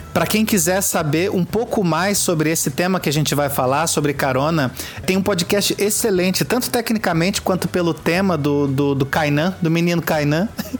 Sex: male